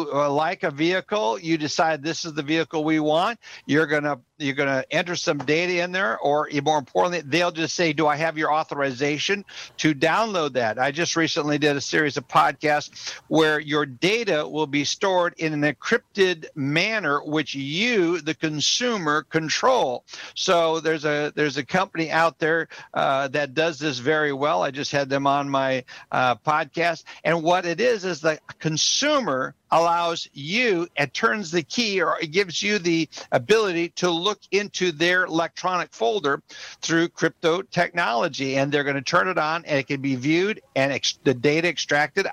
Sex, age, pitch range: male, 60-79, 150-180 Hz